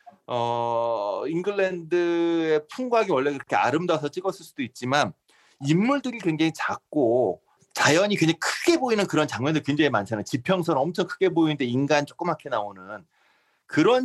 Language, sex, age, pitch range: Korean, male, 30-49, 140-180 Hz